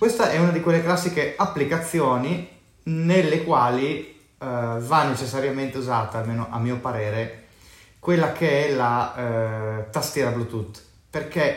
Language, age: Italian, 30-49